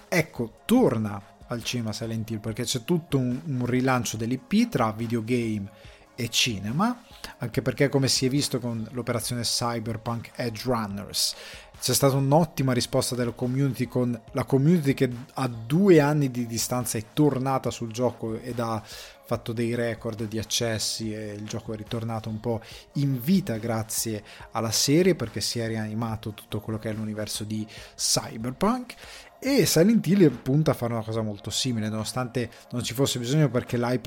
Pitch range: 110-135 Hz